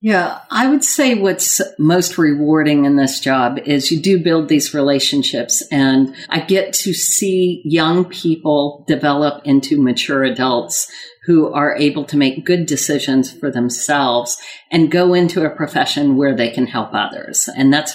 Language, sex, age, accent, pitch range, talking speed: English, female, 50-69, American, 140-180 Hz, 160 wpm